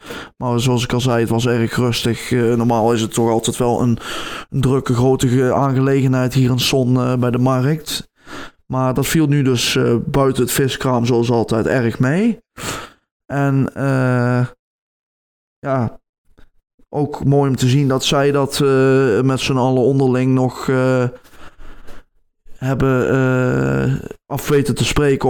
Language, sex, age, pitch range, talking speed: Dutch, male, 20-39, 120-140 Hz, 150 wpm